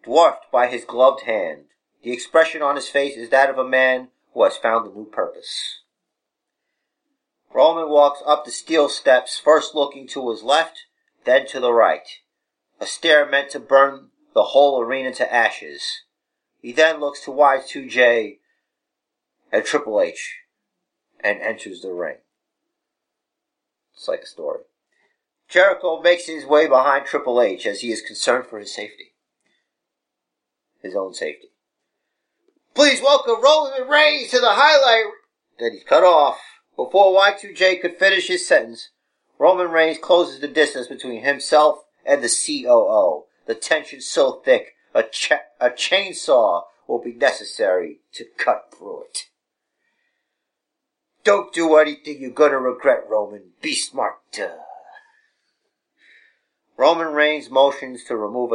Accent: American